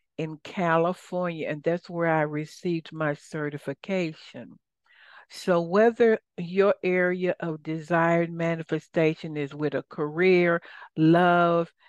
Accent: American